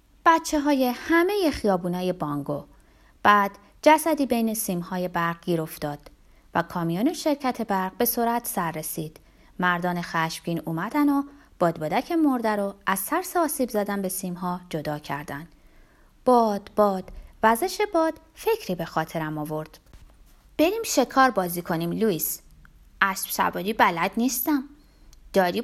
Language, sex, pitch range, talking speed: Persian, female, 175-260 Hz, 125 wpm